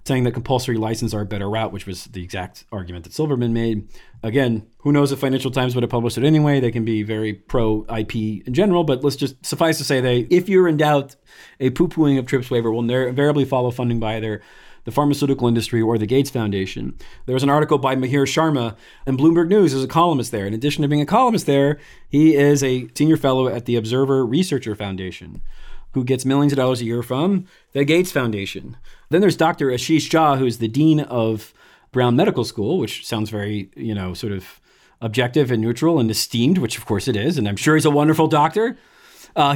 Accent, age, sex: American, 40-59, male